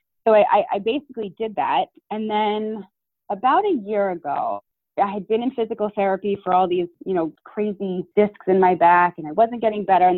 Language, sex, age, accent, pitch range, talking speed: English, female, 20-39, American, 180-225 Hz, 200 wpm